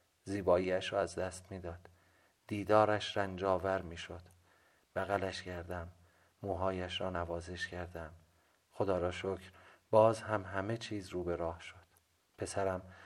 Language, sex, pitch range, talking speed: Persian, male, 90-105 Hz, 125 wpm